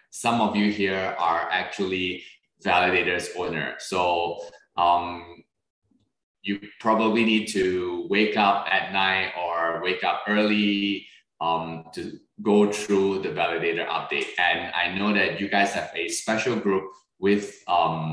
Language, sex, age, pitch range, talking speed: English, male, 20-39, 85-110 Hz, 135 wpm